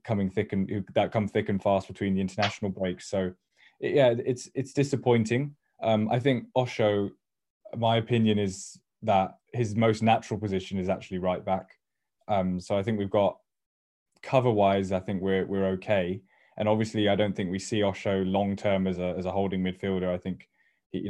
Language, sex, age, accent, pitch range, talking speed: English, male, 10-29, British, 95-110 Hz, 185 wpm